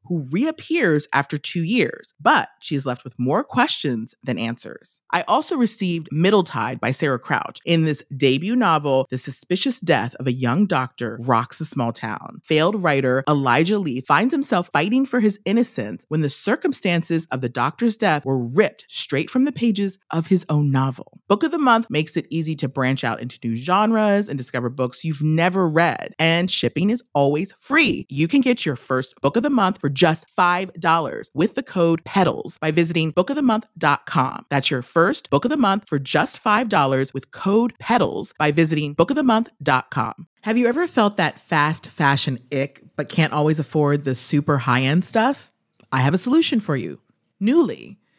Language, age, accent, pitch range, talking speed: English, 30-49, American, 140-210 Hz, 180 wpm